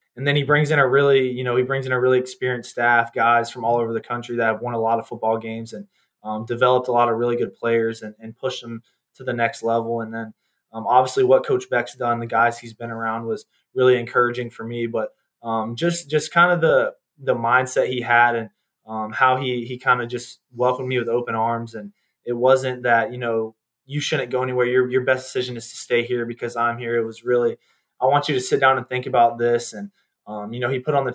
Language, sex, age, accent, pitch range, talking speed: English, male, 20-39, American, 115-130 Hz, 250 wpm